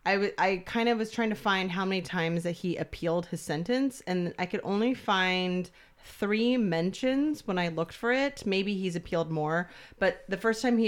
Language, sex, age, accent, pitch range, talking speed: English, female, 30-49, American, 170-195 Hz, 210 wpm